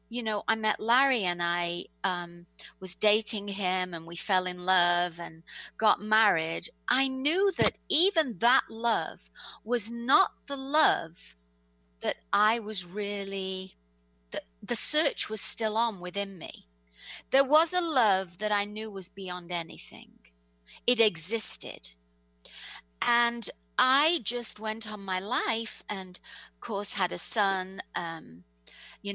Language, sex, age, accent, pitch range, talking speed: English, female, 50-69, British, 170-230 Hz, 140 wpm